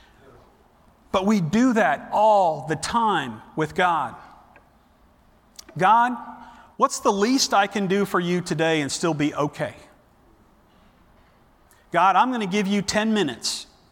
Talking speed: 135 wpm